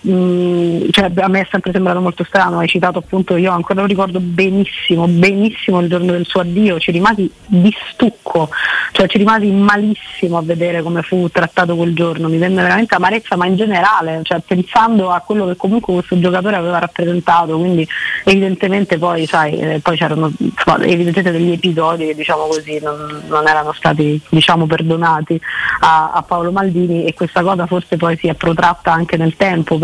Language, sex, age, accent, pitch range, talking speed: Italian, female, 30-49, native, 170-195 Hz, 175 wpm